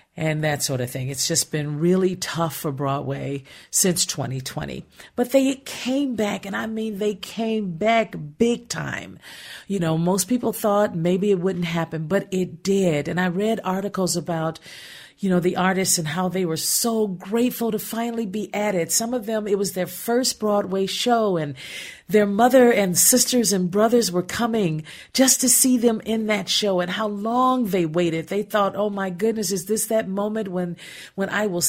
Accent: American